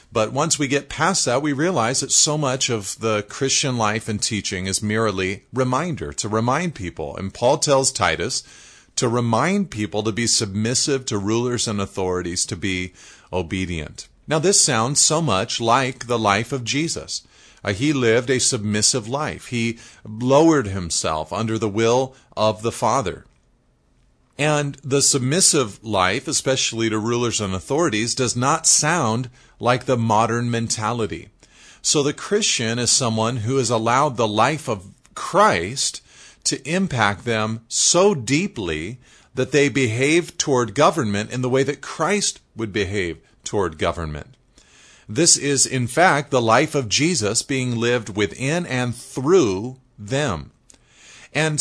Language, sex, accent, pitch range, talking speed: English, male, American, 110-140 Hz, 145 wpm